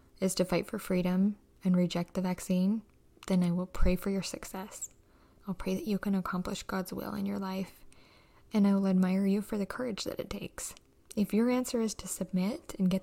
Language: English